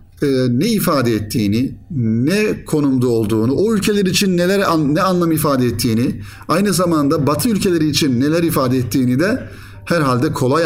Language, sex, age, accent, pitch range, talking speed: Turkish, male, 50-69, native, 115-160 Hz, 140 wpm